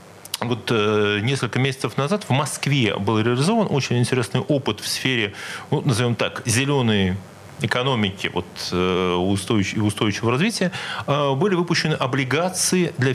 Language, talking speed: Russian, 115 wpm